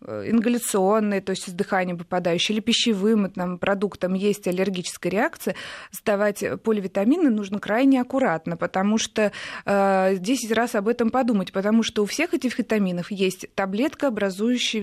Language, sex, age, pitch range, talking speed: Russian, female, 20-39, 190-230 Hz, 140 wpm